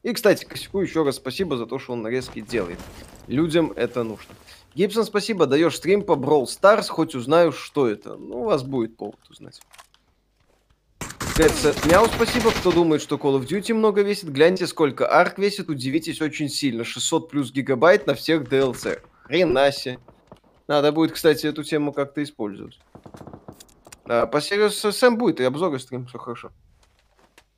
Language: Russian